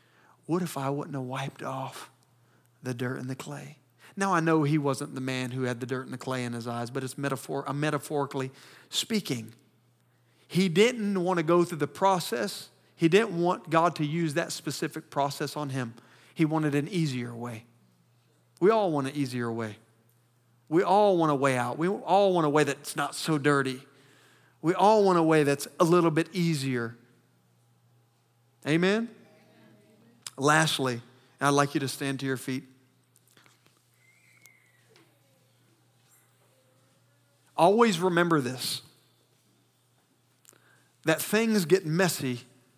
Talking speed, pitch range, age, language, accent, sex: 150 wpm, 125-170 Hz, 40-59, English, American, male